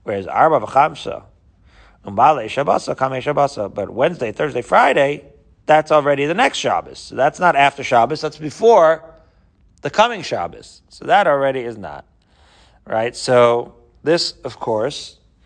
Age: 40-59